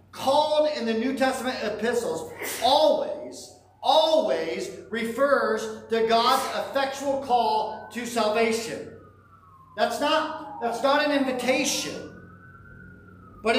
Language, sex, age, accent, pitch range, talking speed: English, male, 40-59, American, 230-290 Hz, 95 wpm